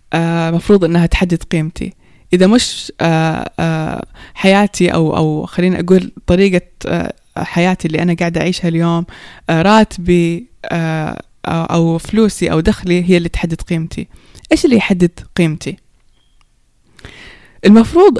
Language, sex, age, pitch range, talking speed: Persian, female, 20-39, 170-200 Hz, 100 wpm